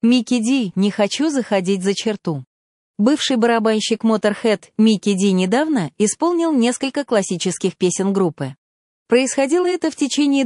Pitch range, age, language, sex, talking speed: 185-250 Hz, 30-49, Russian, female, 125 wpm